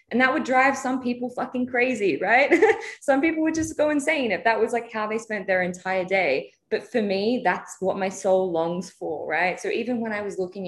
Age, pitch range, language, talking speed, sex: 20-39, 155-200 Hz, English, 230 wpm, female